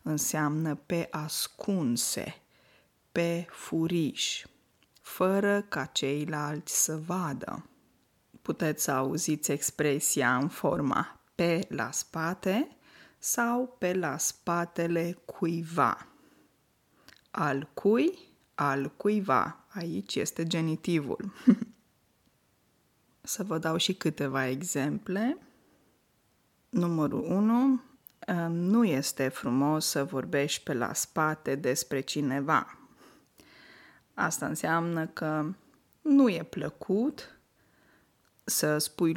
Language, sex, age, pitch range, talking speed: Romanian, female, 20-39, 150-205 Hz, 85 wpm